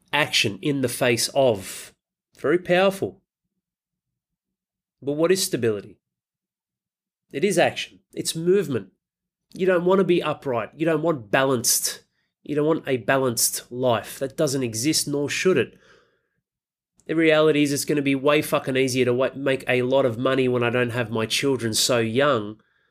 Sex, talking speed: male, 160 wpm